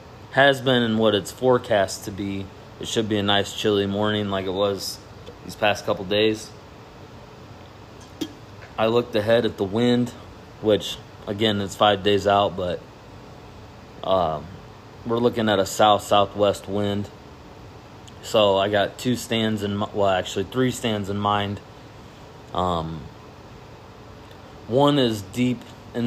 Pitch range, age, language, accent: 100-115 Hz, 20-39, English, American